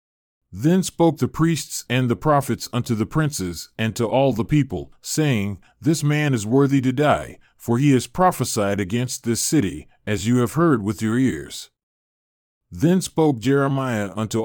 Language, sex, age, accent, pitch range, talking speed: English, male, 40-59, American, 110-145 Hz, 165 wpm